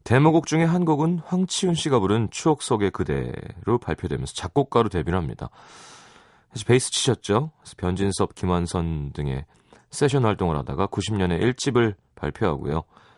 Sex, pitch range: male, 85-125 Hz